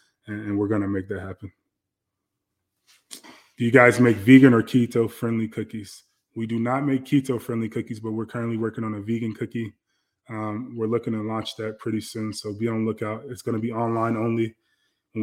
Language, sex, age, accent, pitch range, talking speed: English, male, 20-39, American, 105-115 Hz, 190 wpm